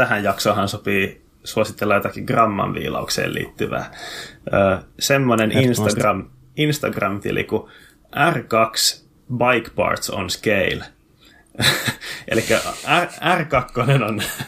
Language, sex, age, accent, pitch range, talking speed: Finnish, male, 20-39, native, 105-125 Hz, 80 wpm